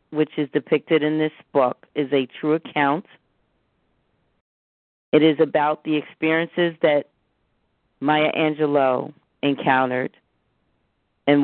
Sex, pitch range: female, 135-155 Hz